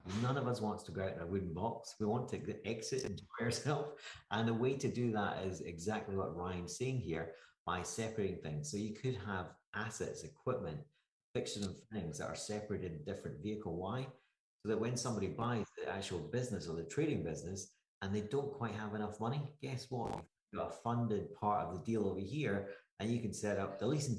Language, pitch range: English, 95-120 Hz